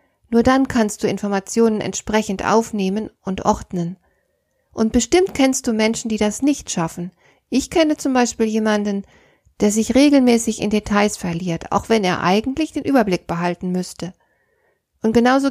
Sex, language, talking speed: female, German, 150 wpm